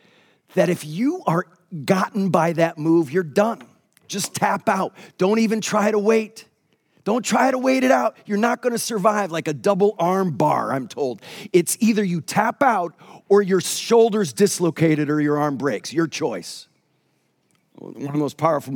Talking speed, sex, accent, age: 180 wpm, male, American, 40-59